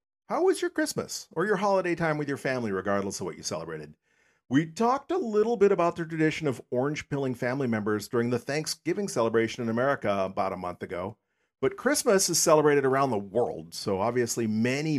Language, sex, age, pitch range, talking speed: English, male, 40-59, 95-130 Hz, 190 wpm